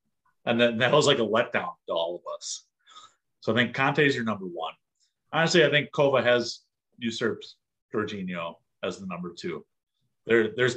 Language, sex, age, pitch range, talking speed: English, male, 30-49, 100-150 Hz, 180 wpm